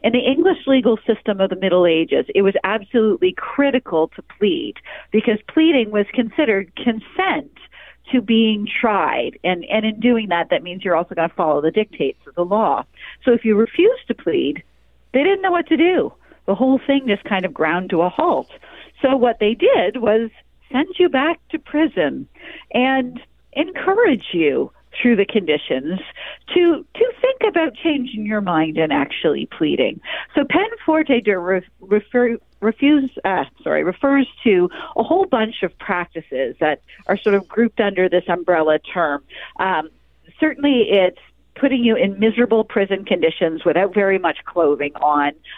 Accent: American